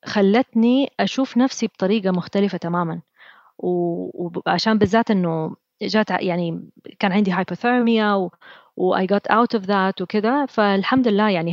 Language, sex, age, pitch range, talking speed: Arabic, female, 20-39, 190-245 Hz, 125 wpm